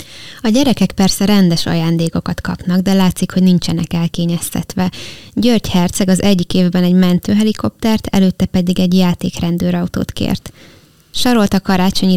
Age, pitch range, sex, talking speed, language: 20-39, 175-200 Hz, female, 130 wpm, Hungarian